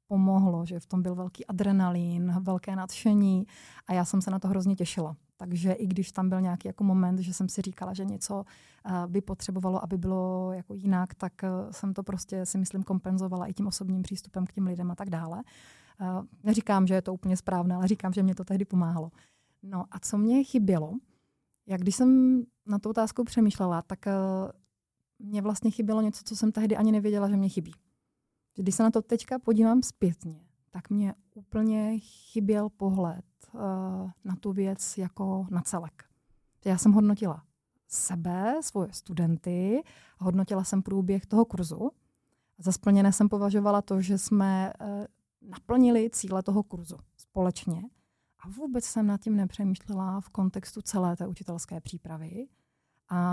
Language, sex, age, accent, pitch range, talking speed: Czech, female, 30-49, native, 180-205 Hz, 165 wpm